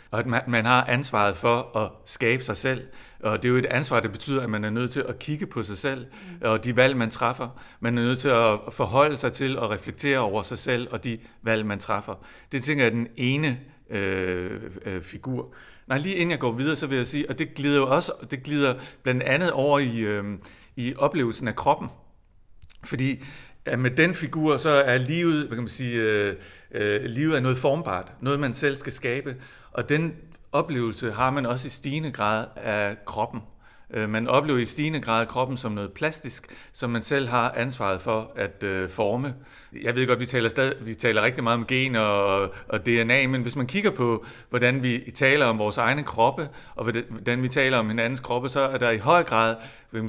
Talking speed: 210 wpm